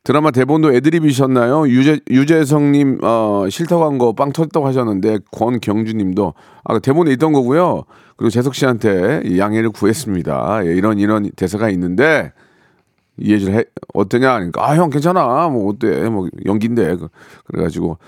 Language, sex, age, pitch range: Korean, male, 40-59, 105-150 Hz